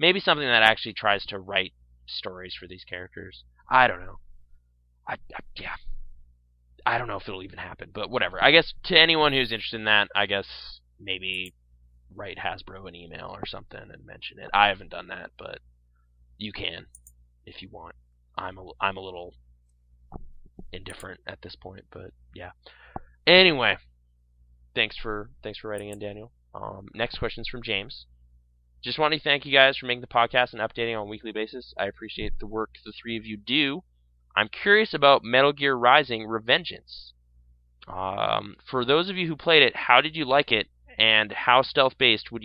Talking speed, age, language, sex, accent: 180 wpm, 20-39, English, male, American